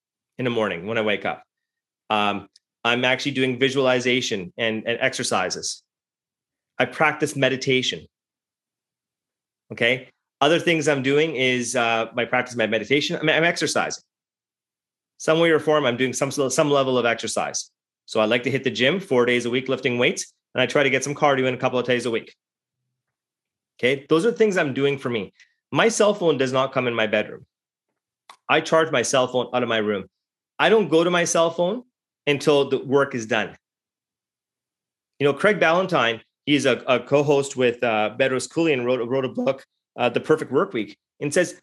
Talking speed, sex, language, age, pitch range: 190 wpm, male, English, 30-49, 125-160 Hz